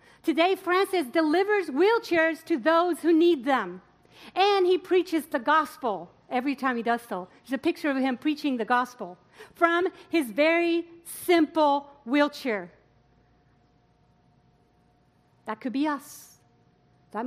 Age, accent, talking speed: 50-69, American, 130 wpm